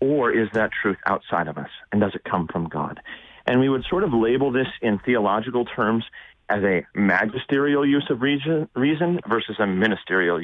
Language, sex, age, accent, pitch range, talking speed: English, male, 40-59, American, 120-150 Hz, 185 wpm